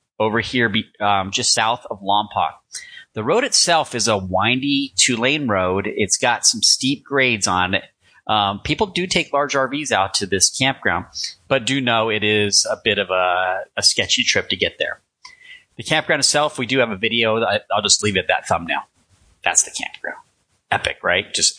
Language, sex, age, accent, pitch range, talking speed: English, male, 30-49, American, 95-125 Hz, 185 wpm